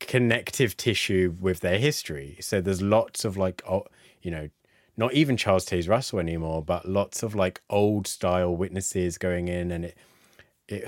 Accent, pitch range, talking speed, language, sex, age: British, 90-110 Hz, 170 wpm, English, male, 20-39